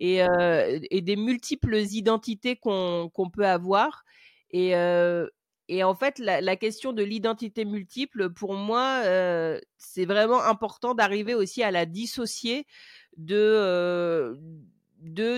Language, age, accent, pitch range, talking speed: French, 40-59, French, 180-230 Hz, 120 wpm